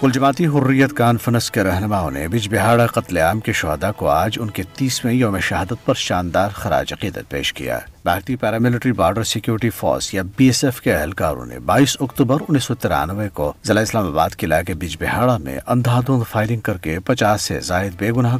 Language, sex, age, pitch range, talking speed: Urdu, male, 50-69, 90-125 Hz, 175 wpm